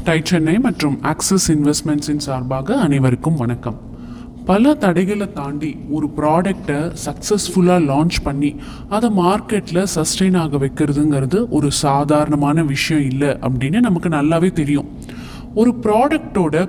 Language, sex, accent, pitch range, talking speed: Tamil, male, native, 145-185 Hz, 110 wpm